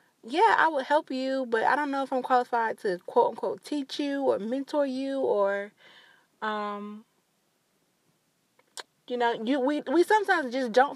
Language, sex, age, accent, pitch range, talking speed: English, female, 20-39, American, 200-260 Hz, 165 wpm